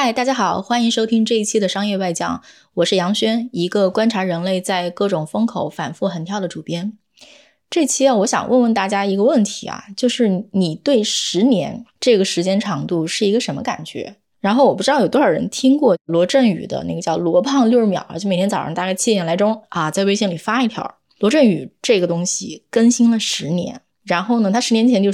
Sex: female